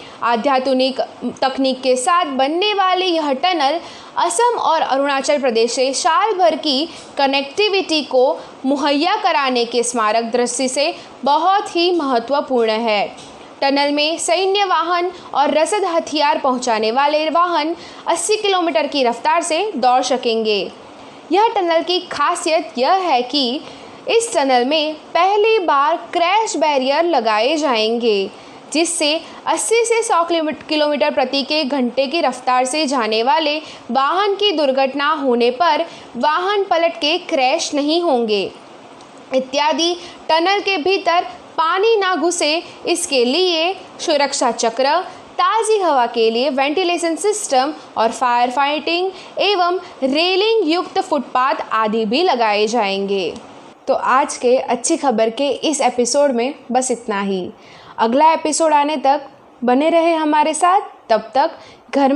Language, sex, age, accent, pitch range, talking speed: Hindi, female, 20-39, native, 255-345 Hz, 130 wpm